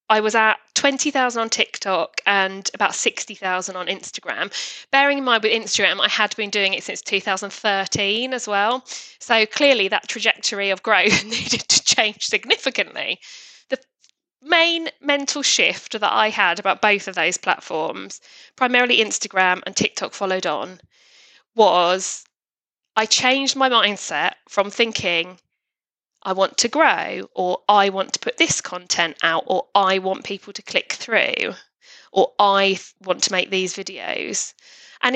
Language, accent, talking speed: English, British, 150 wpm